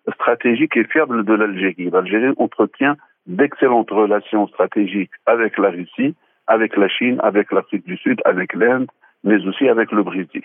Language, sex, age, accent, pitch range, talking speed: French, male, 60-79, French, 105-130 Hz, 155 wpm